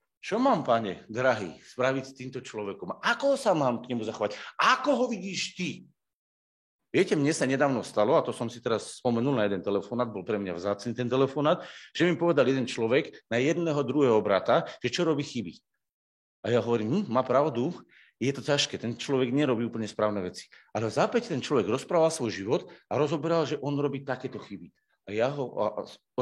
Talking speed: 195 wpm